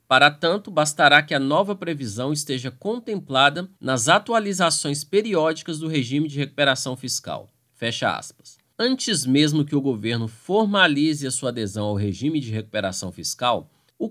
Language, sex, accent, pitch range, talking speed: Portuguese, male, Brazilian, 115-165 Hz, 145 wpm